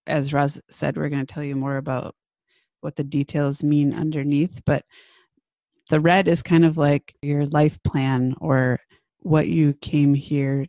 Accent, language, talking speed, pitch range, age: American, English, 165 wpm, 140-160 Hz, 30-49